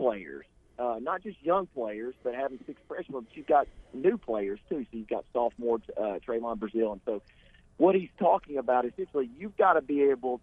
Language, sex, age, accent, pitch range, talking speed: English, male, 50-69, American, 120-170 Hz, 195 wpm